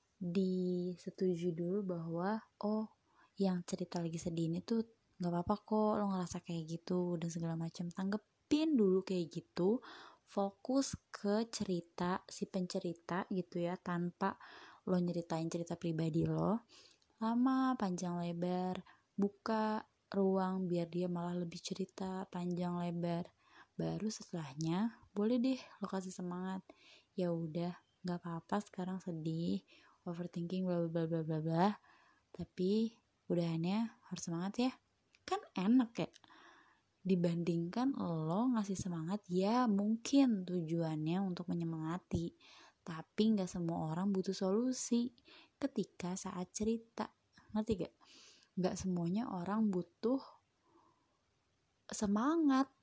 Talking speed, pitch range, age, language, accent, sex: 110 wpm, 175-215 Hz, 20-39, Indonesian, native, female